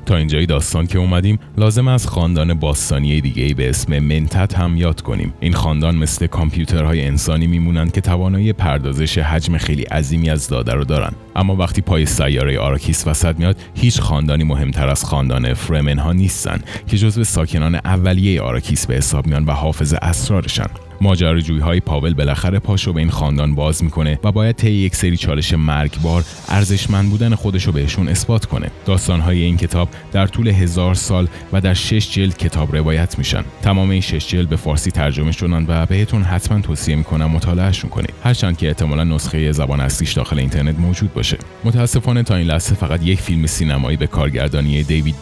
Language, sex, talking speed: Persian, male, 175 wpm